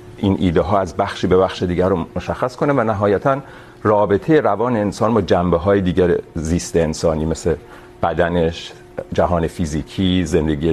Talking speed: 150 wpm